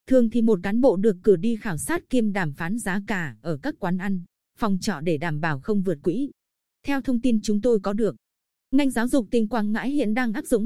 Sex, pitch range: female, 180-235 Hz